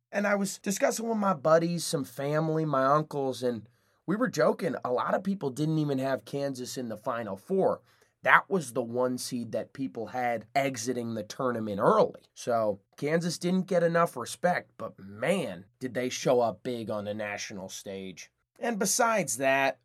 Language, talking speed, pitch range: English, 180 wpm, 125-165 Hz